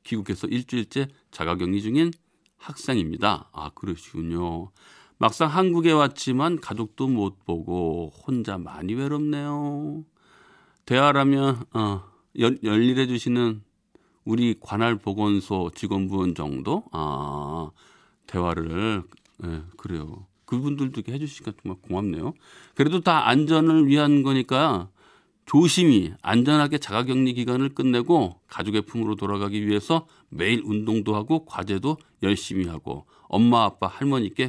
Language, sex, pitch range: Korean, male, 95-145 Hz